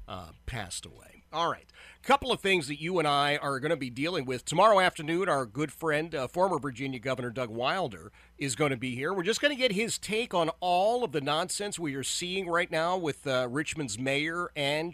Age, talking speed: 40-59, 230 wpm